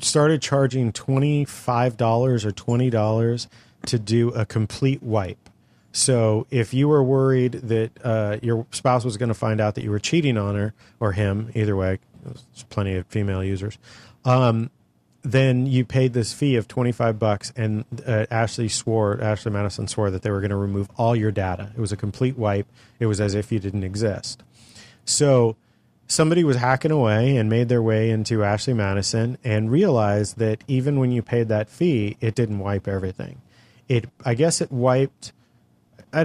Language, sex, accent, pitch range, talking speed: English, male, American, 105-125 Hz, 175 wpm